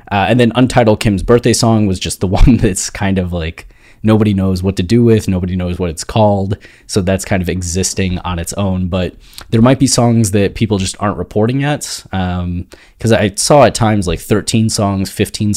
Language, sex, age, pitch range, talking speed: English, male, 20-39, 90-110 Hz, 210 wpm